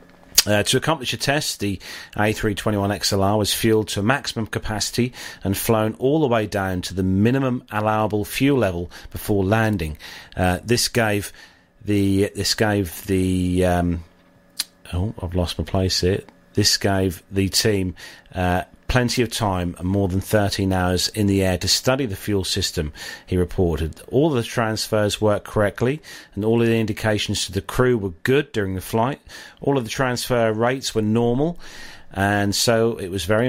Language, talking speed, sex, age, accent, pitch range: English, 165 wpm, male, 40-59, British, 95-115 Hz